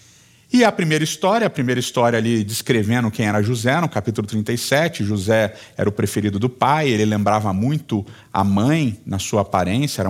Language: Portuguese